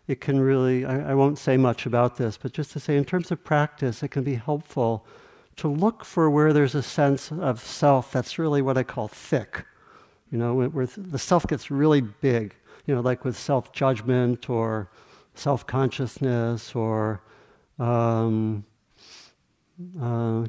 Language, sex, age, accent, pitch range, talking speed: English, male, 60-79, American, 115-150 Hz, 165 wpm